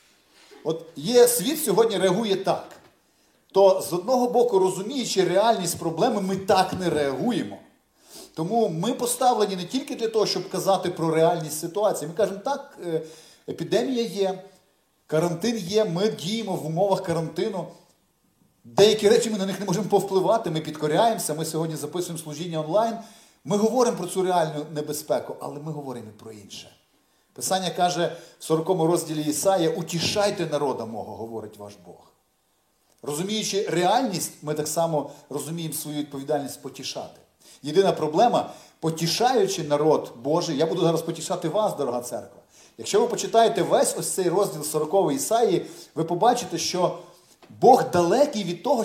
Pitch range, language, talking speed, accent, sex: 160-210 Hz, Ukrainian, 145 wpm, native, male